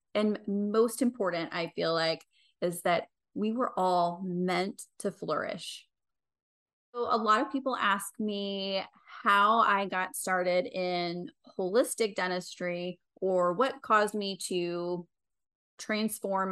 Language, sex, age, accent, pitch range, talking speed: English, female, 20-39, American, 175-215 Hz, 125 wpm